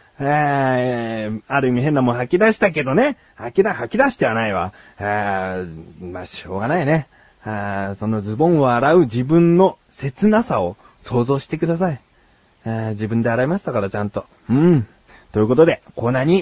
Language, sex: Japanese, male